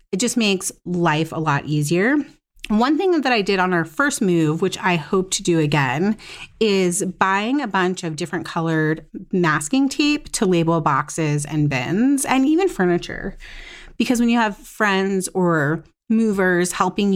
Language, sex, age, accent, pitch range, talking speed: English, female, 30-49, American, 160-210 Hz, 165 wpm